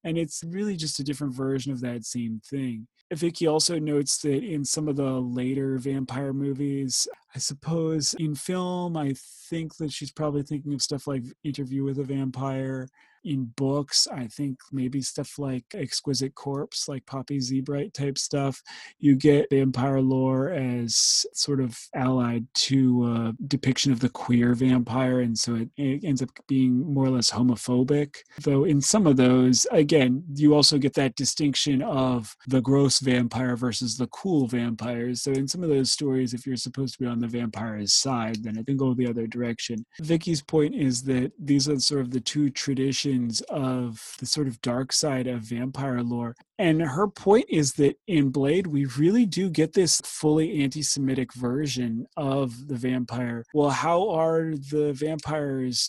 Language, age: English, 30-49